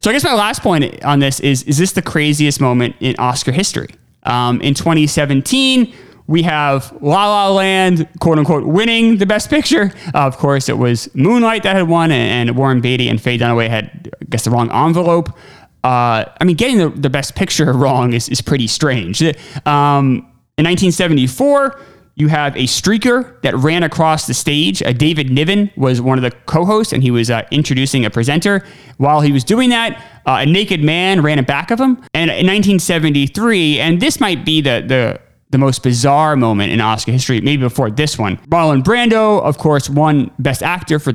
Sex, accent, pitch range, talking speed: male, American, 130-175 Hz, 195 wpm